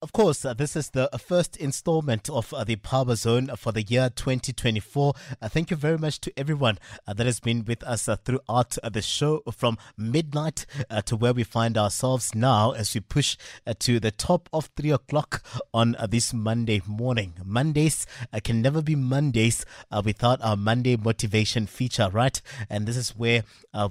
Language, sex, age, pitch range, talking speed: English, male, 30-49, 110-135 Hz, 195 wpm